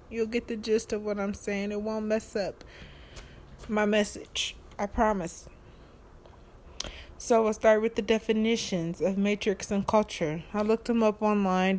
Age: 20-39